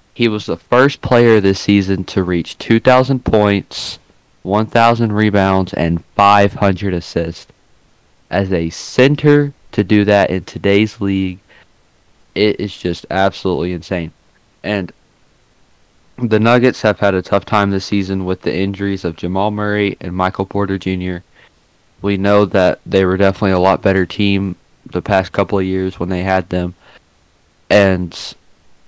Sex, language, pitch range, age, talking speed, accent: male, English, 90-105 Hz, 20-39, 145 wpm, American